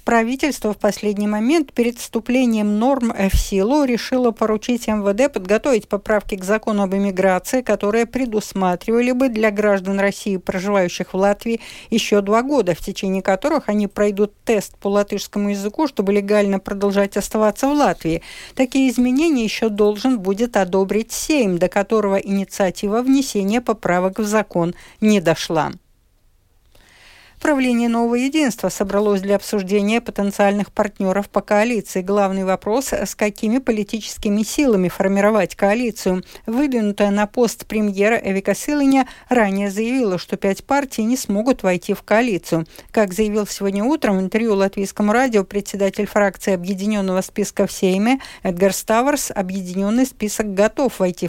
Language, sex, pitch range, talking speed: Russian, female, 195-235 Hz, 135 wpm